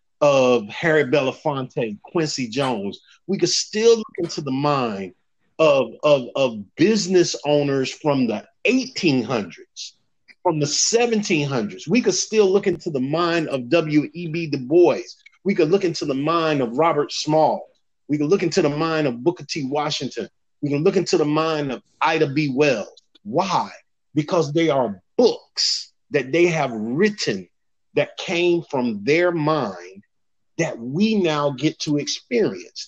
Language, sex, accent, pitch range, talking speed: English, male, American, 140-180 Hz, 150 wpm